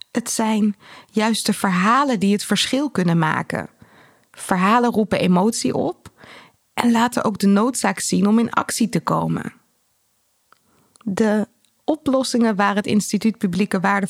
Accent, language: Dutch, Dutch